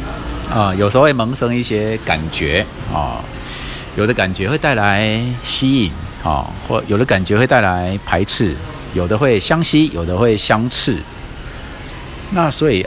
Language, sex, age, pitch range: Chinese, male, 50-69, 90-125 Hz